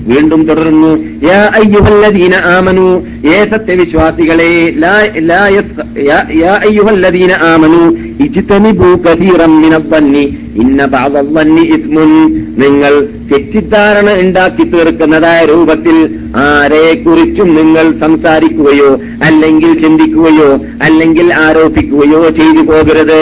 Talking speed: 35 wpm